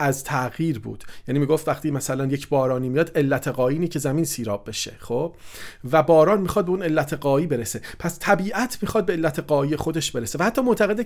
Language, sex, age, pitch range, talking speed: Persian, male, 40-59, 135-175 Hz, 195 wpm